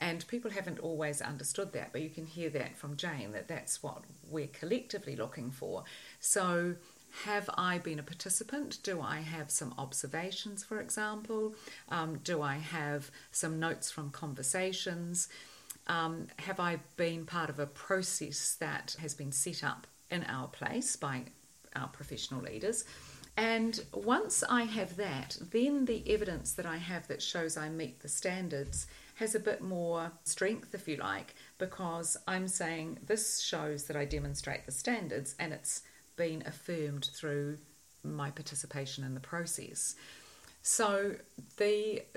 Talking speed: 155 wpm